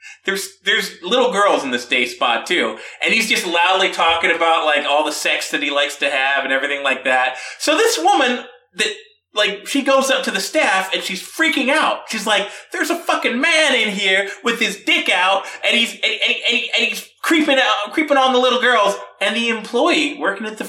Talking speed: 210 wpm